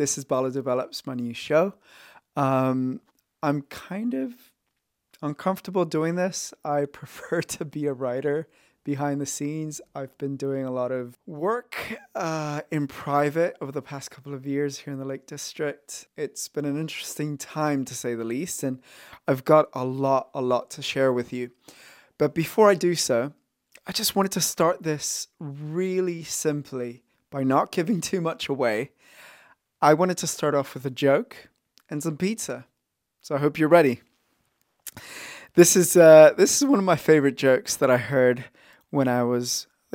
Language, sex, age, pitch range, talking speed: English, male, 20-39, 130-160 Hz, 175 wpm